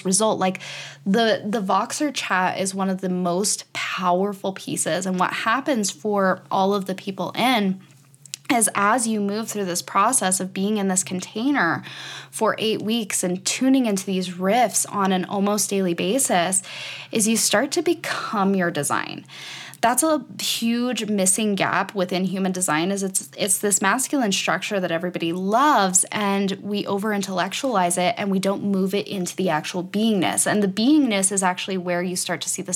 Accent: American